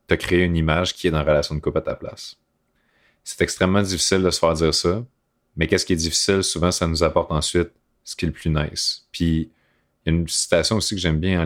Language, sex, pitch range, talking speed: French, male, 85-110 Hz, 255 wpm